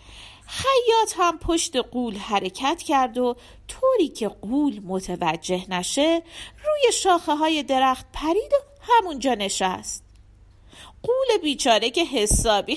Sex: female